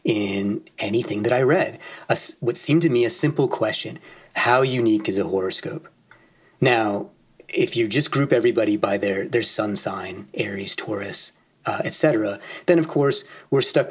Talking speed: 160 wpm